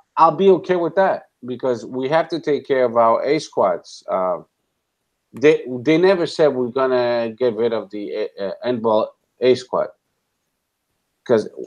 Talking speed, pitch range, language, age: 165 wpm, 110-160 Hz, English, 50-69